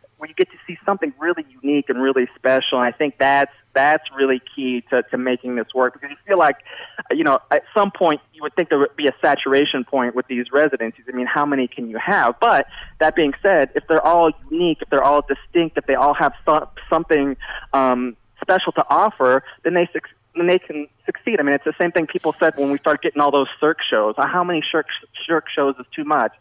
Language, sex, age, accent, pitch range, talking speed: English, male, 20-39, American, 125-155 Hz, 235 wpm